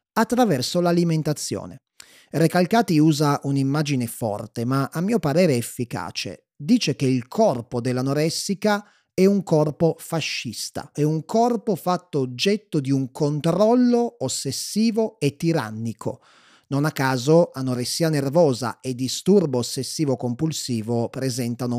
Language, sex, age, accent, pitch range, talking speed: Italian, male, 30-49, native, 120-155 Hz, 115 wpm